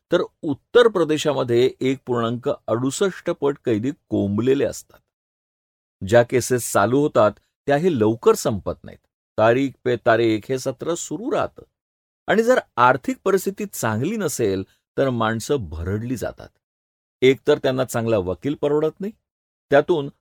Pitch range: 105-145 Hz